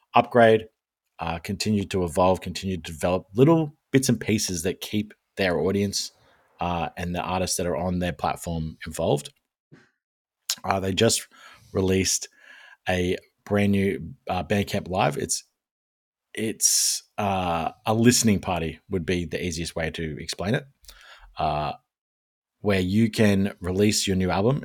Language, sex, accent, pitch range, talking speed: English, male, Australian, 85-105 Hz, 140 wpm